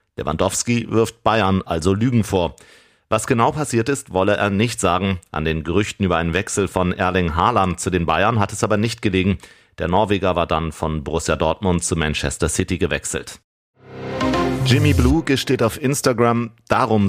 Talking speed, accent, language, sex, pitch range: 170 wpm, German, German, male, 95-115 Hz